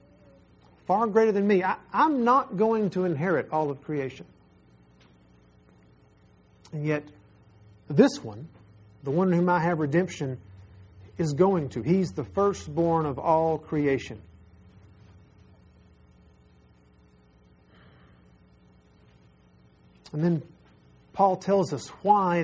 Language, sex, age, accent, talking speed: English, male, 50-69, American, 100 wpm